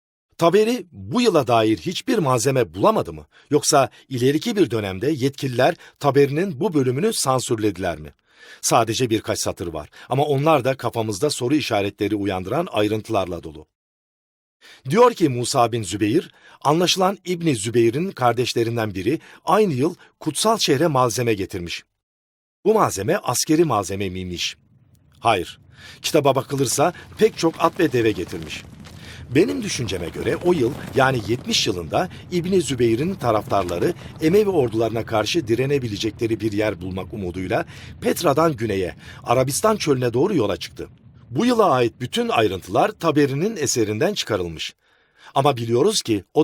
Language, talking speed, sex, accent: Turkish, 130 wpm, male, native